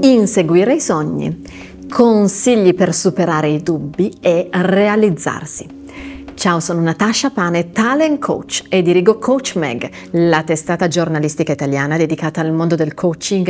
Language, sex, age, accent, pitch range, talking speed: Italian, female, 30-49, native, 155-195 Hz, 130 wpm